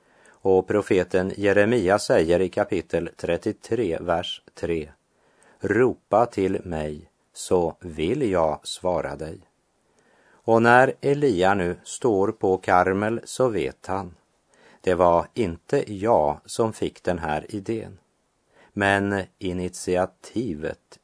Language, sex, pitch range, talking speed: Swedish, male, 85-110 Hz, 110 wpm